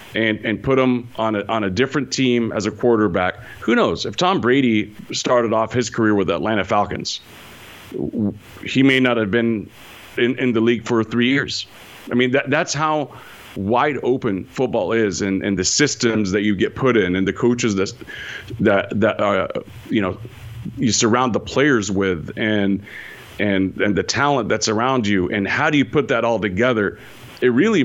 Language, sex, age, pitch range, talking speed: English, male, 40-59, 105-125 Hz, 190 wpm